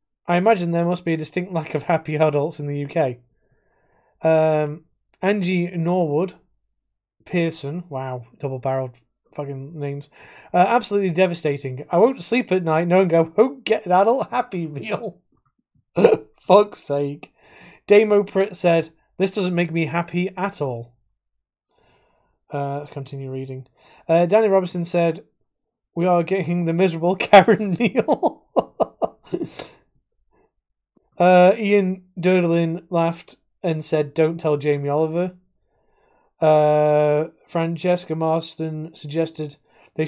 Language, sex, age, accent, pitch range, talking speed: English, male, 20-39, British, 155-180 Hz, 120 wpm